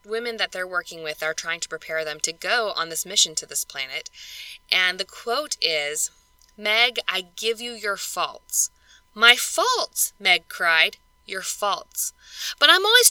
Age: 10-29